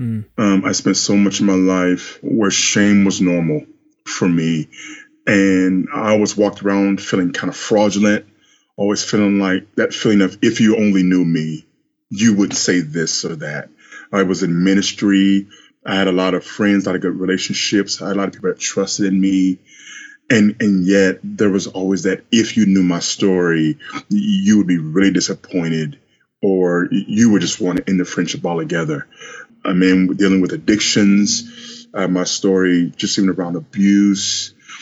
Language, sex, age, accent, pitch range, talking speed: English, male, 30-49, American, 90-105 Hz, 180 wpm